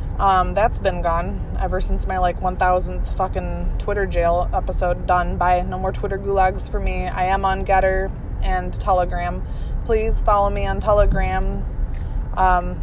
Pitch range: 180-220 Hz